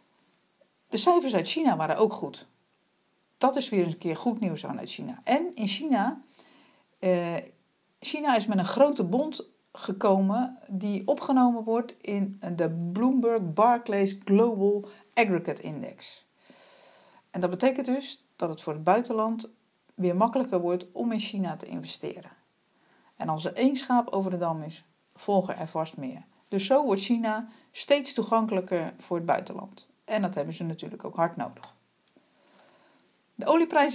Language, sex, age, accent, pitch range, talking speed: Dutch, female, 50-69, Dutch, 180-250 Hz, 155 wpm